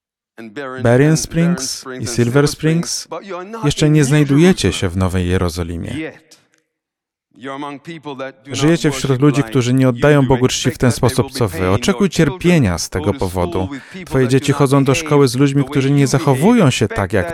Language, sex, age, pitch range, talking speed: Polish, male, 30-49, 110-155 Hz, 150 wpm